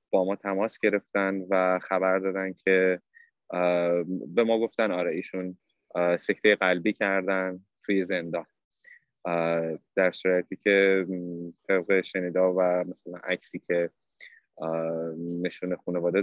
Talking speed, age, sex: 105 wpm, 20-39, male